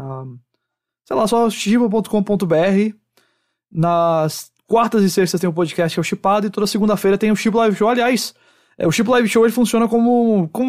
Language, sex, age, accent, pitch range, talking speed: English, male, 20-39, Brazilian, 160-210 Hz, 185 wpm